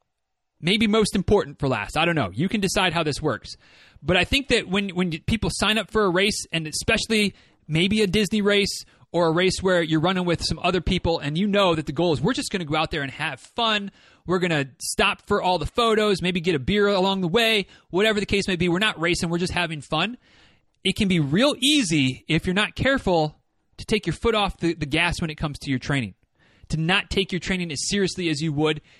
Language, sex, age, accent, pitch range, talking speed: English, male, 30-49, American, 155-210 Hz, 245 wpm